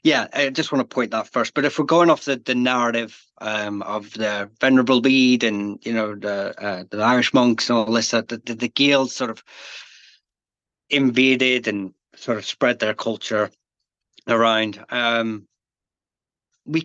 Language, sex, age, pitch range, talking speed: English, male, 30-49, 110-130 Hz, 170 wpm